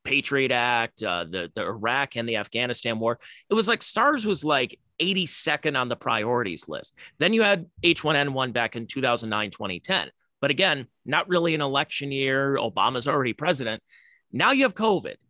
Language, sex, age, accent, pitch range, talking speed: English, male, 30-49, American, 120-180 Hz, 170 wpm